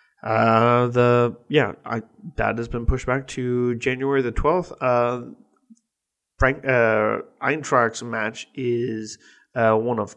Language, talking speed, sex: English, 130 wpm, male